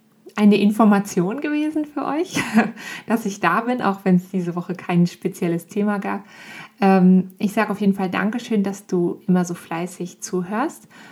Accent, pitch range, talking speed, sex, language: German, 185-220 Hz, 160 wpm, female, German